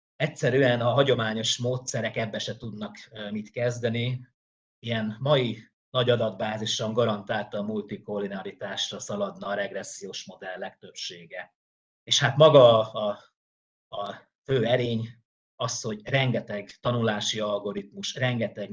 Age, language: 30-49, Hungarian